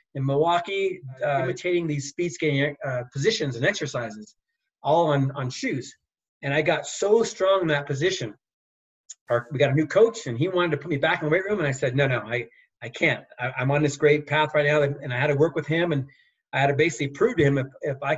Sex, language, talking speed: male, English, 250 wpm